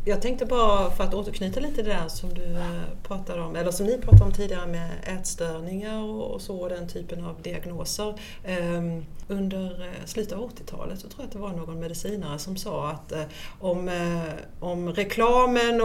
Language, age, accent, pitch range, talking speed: Swedish, 40-59, native, 165-205 Hz, 170 wpm